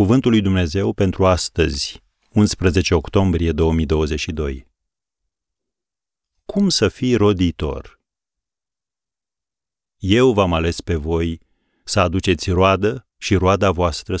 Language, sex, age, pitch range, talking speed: Romanian, male, 40-59, 80-100 Hz, 95 wpm